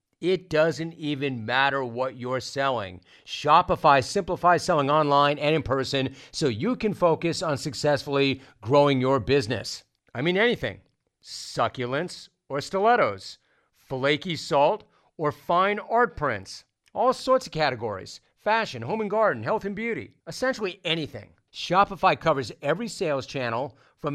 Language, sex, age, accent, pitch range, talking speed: English, male, 40-59, American, 135-170 Hz, 135 wpm